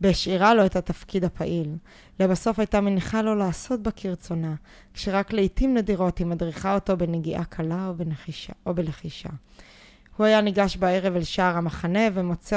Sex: female